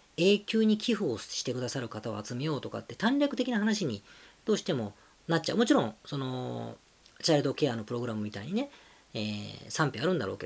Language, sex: Japanese, female